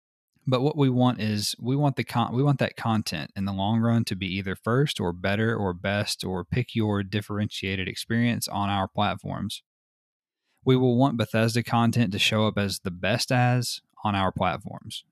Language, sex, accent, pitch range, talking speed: English, male, American, 100-120 Hz, 190 wpm